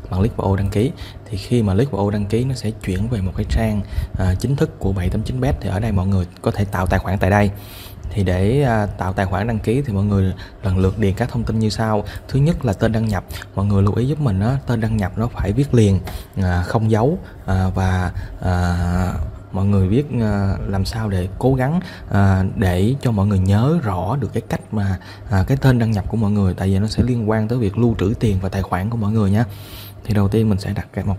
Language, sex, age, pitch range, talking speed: Vietnamese, male, 20-39, 95-115 Hz, 260 wpm